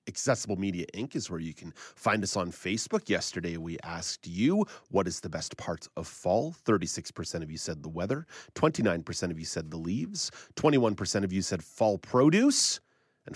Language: English